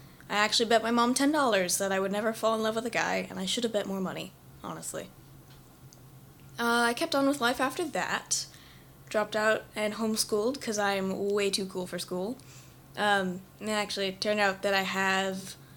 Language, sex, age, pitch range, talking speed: English, female, 20-39, 190-220 Hz, 200 wpm